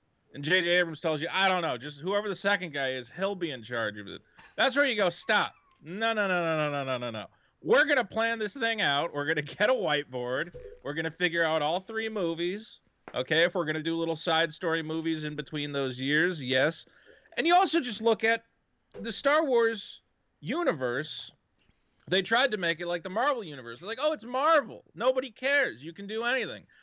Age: 30-49